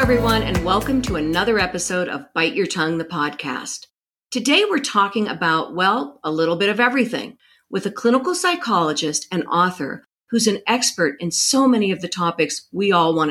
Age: 50-69